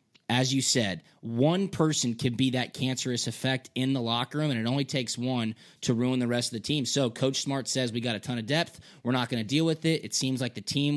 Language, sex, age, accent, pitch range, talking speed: English, male, 20-39, American, 120-150 Hz, 265 wpm